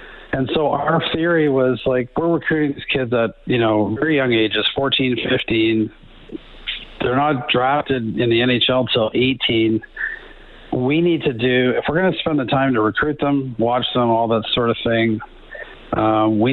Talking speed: 180 wpm